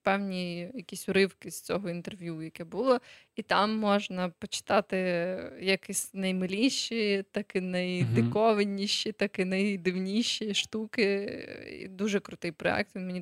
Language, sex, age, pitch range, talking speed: Ukrainian, female, 20-39, 180-215 Hz, 120 wpm